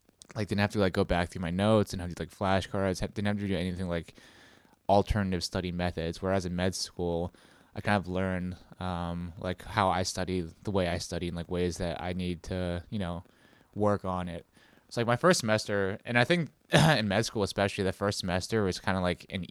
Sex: male